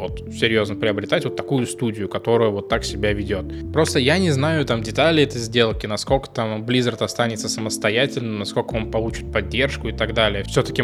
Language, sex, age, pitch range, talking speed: Russian, male, 20-39, 110-130 Hz, 175 wpm